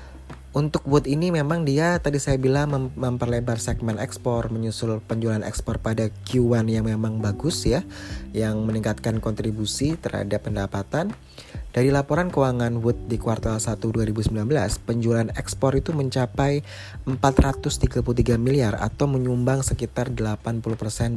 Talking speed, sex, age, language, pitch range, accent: 125 wpm, male, 20-39, Indonesian, 105-125 Hz, native